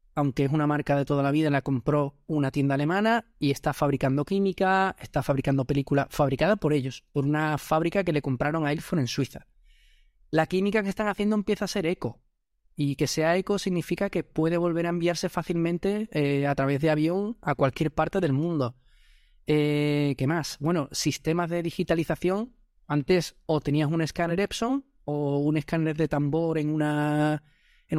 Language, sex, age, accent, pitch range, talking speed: Spanish, male, 20-39, Spanish, 145-185 Hz, 180 wpm